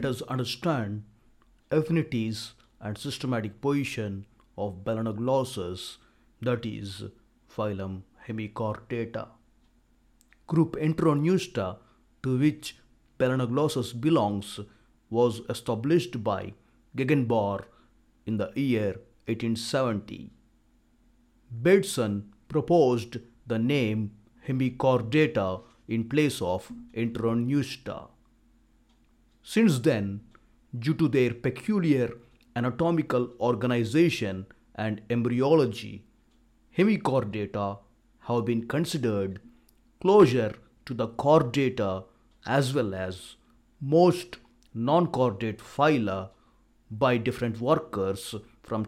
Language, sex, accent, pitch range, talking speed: Telugu, male, native, 110-135 Hz, 80 wpm